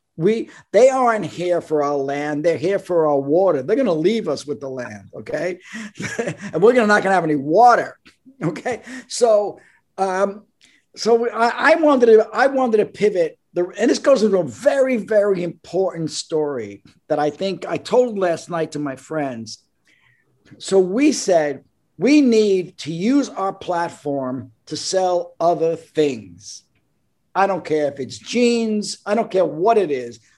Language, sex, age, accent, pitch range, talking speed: English, male, 50-69, American, 155-220 Hz, 175 wpm